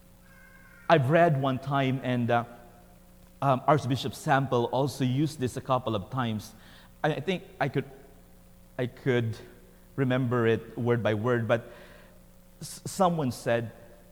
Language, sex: English, male